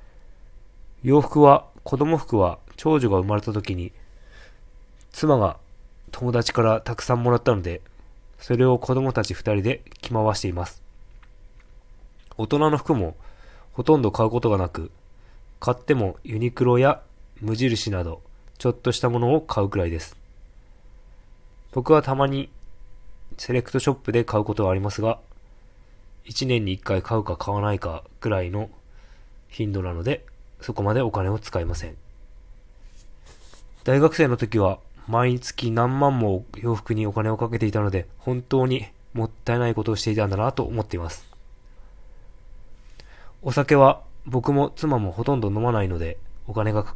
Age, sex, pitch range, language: 20-39, male, 100-125 Hz, Japanese